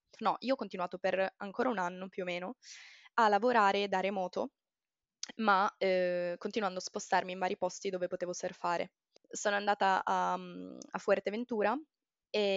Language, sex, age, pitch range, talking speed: Italian, female, 20-39, 180-220 Hz, 155 wpm